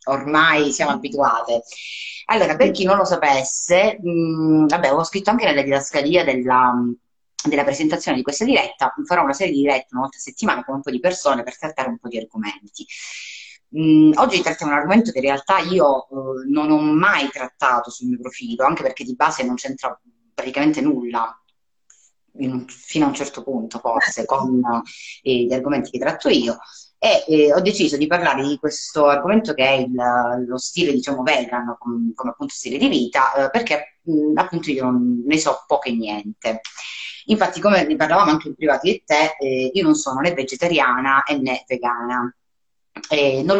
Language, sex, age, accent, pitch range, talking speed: Italian, female, 30-49, native, 130-180 Hz, 175 wpm